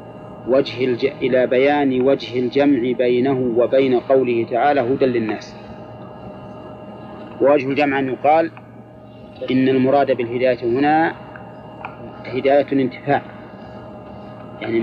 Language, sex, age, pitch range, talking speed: Arabic, male, 40-59, 125-145 Hz, 90 wpm